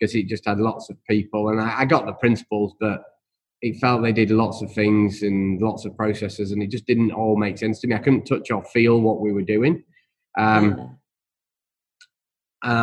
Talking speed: 210 wpm